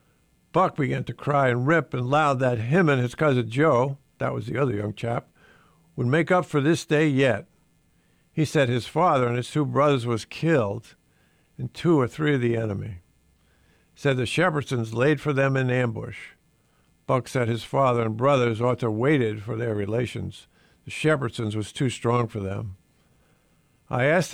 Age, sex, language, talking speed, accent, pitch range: 50-69, male, English, 185 wpm, American, 115-155 Hz